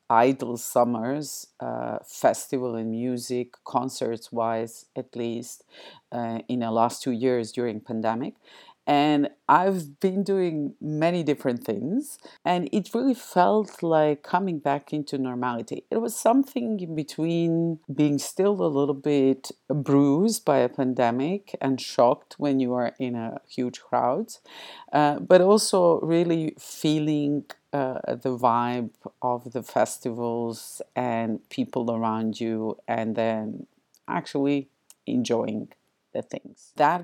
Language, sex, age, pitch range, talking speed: English, female, 50-69, 120-165 Hz, 130 wpm